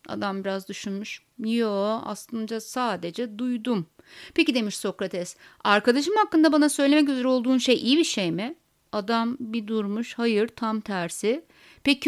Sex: female